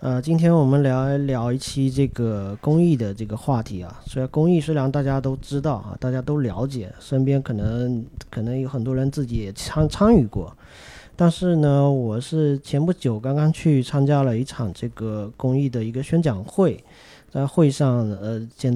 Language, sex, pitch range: Chinese, male, 115-150 Hz